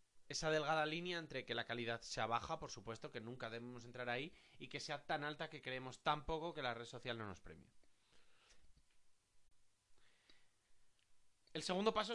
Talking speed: 175 wpm